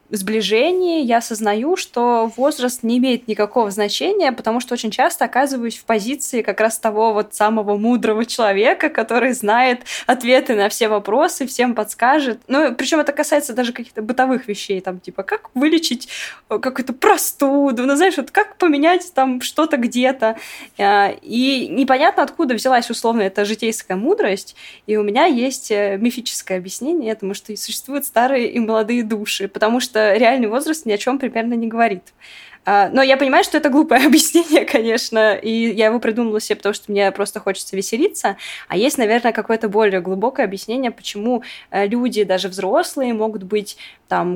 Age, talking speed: 20-39, 160 wpm